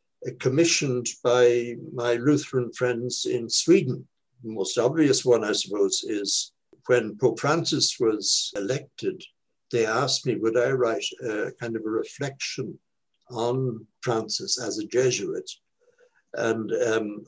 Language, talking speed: English, 130 wpm